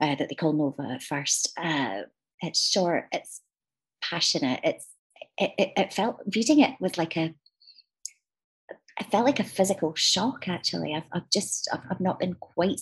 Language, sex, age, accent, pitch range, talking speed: English, female, 30-49, British, 150-180 Hz, 170 wpm